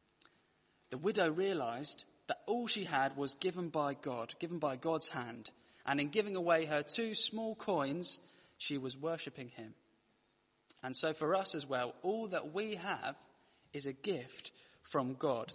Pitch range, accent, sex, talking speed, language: 140-185 Hz, British, male, 160 wpm, English